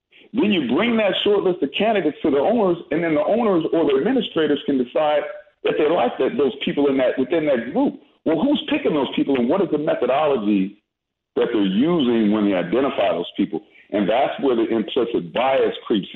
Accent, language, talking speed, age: American, English, 210 wpm, 40-59